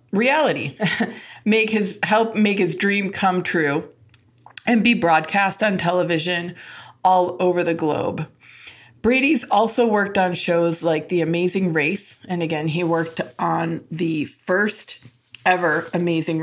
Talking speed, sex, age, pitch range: 130 wpm, female, 20-39, 170-210 Hz